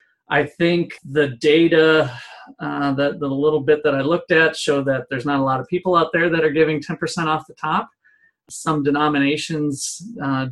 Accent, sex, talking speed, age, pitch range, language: American, male, 190 wpm, 40-59, 140-165 Hz, English